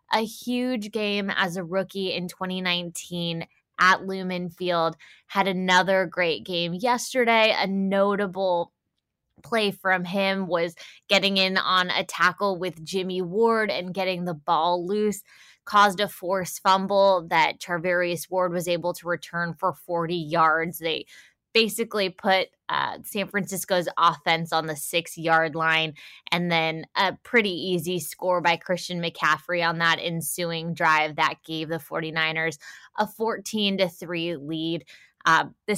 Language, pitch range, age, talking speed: English, 165-195 Hz, 20-39, 145 wpm